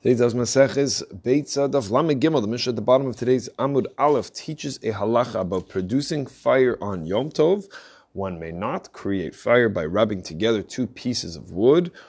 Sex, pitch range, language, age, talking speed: male, 100-130 Hz, English, 20-39, 150 wpm